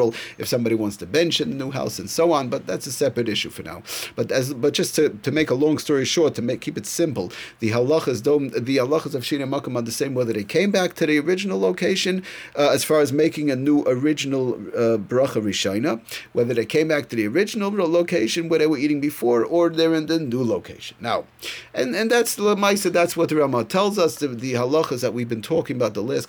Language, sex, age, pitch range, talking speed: English, male, 40-59, 115-160 Hz, 240 wpm